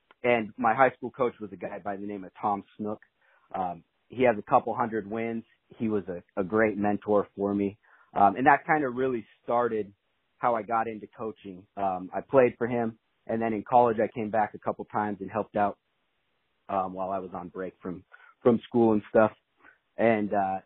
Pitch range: 100-115 Hz